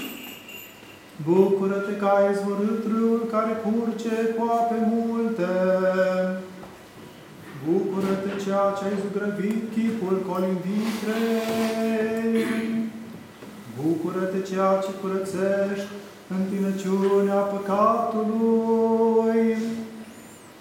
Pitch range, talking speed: 195-225 Hz, 65 wpm